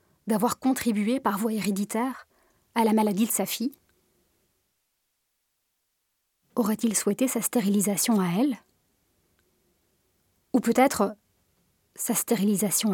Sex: female